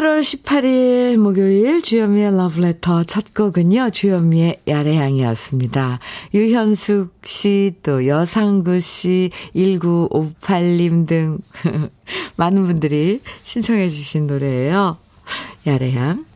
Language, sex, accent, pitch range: Korean, female, native, 150-215 Hz